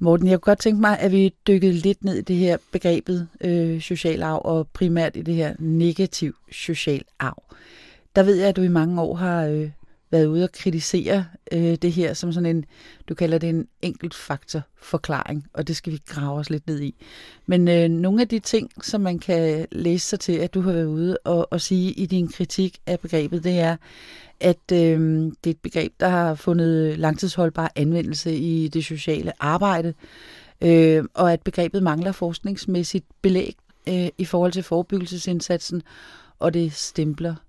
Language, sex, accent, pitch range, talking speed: English, female, Danish, 160-180 Hz, 185 wpm